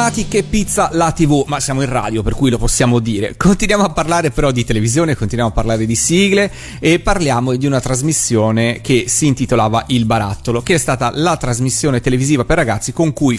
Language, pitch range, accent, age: Italian, 120-165 Hz, native, 30-49